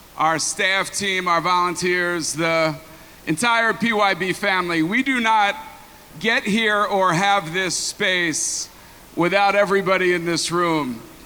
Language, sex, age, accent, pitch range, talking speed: English, male, 50-69, American, 175-205 Hz, 125 wpm